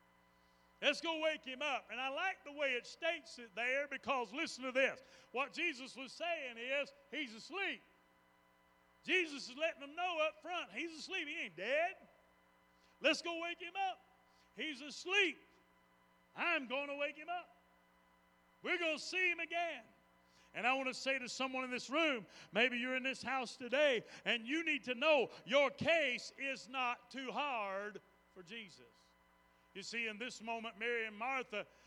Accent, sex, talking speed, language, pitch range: American, male, 175 wpm, English, 230-285 Hz